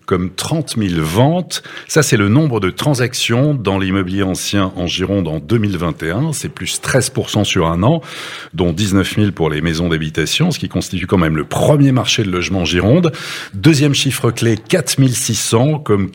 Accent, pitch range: French, 95-140 Hz